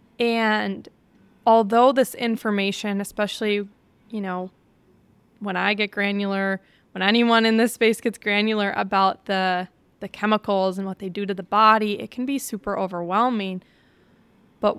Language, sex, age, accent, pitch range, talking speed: English, female, 20-39, American, 205-245 Hz, 140 wpm